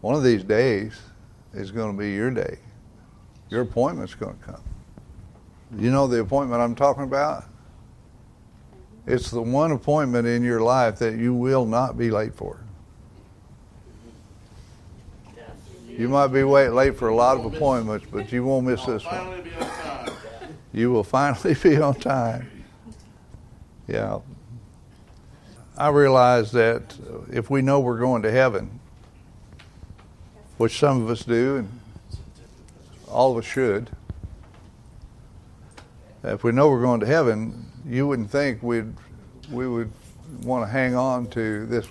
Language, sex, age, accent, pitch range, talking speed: English, male, 60-79, American, 110-130 Hz, 145 wpm